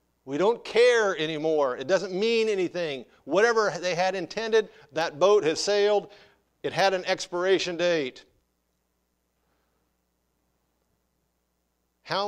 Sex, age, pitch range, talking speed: male, 50-69, 135-205 Hz, 110 wpm